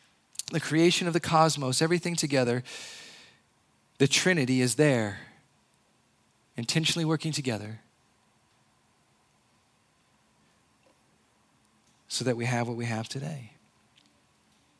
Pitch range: 130-160 Hz